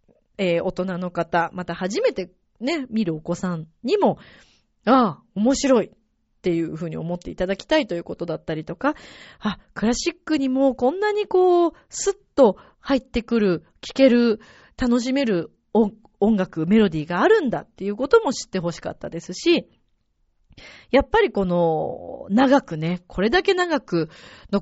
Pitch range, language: 175-270 Hz, Japanese